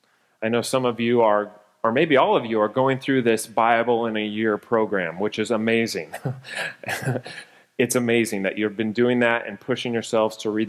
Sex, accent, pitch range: male, American, 110-140 Hz